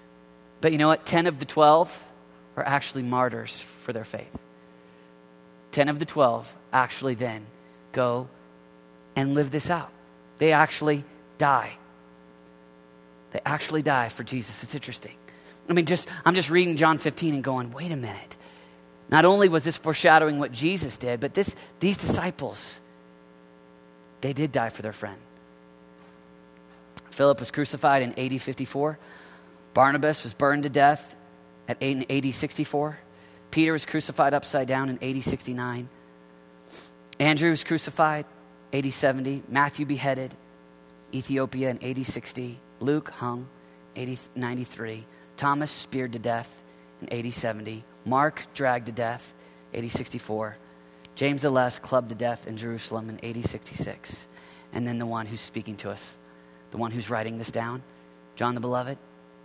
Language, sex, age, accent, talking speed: English, male, 30-49, American, 150 wpm